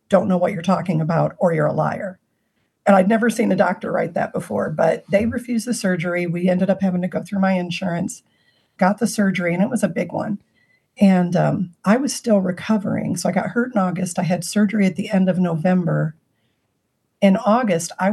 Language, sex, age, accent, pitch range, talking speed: English, female, 50-69, American, 180-210 Hz, 215 wpm